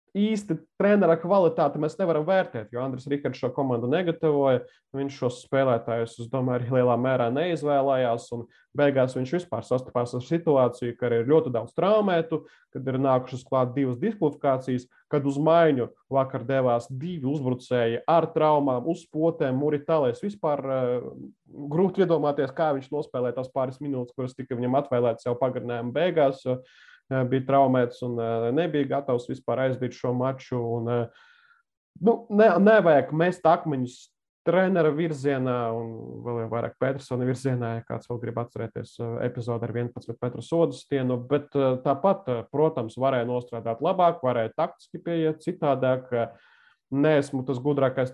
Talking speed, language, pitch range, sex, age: 135 wpm, English, 125-155 Hz, male, 20-39